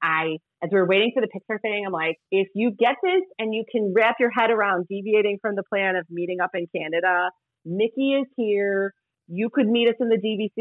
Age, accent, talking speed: 30-49, American, 230 wpm